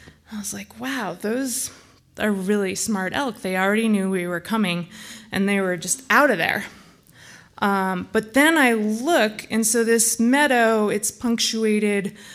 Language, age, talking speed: English, 20-39, 160 wpm